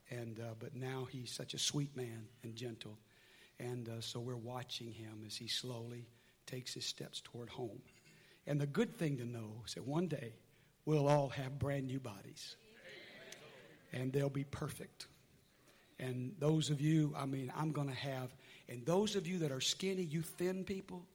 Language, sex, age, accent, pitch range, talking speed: English, male, 60-79, American, 135-190 Hz, 180 wpm